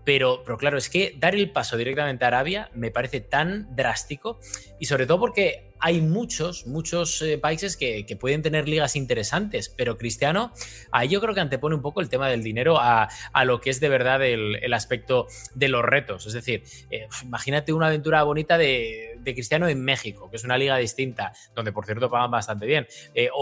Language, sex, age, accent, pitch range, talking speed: Spanish, male, 20-39, Spanish, 120-155 Hz, 200 wpm